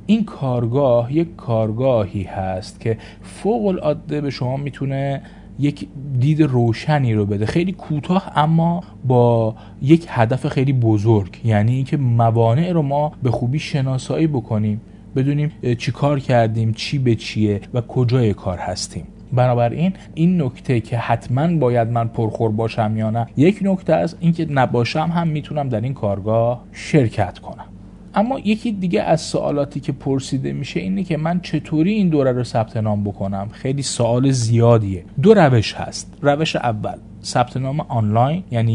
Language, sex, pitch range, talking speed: Persian, male, 110-150 Hz, 150 wpm